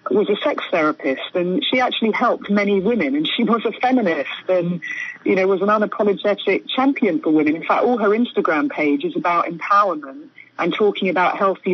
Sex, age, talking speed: female, 30-49, 190 wpm